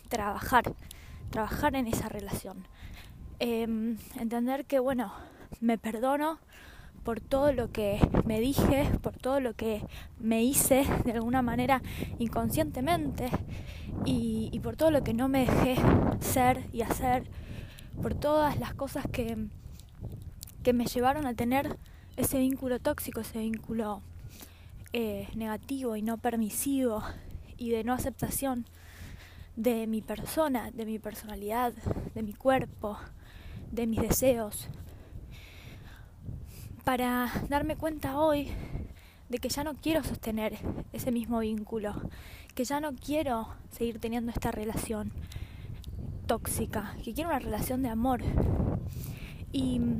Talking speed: 125 wpm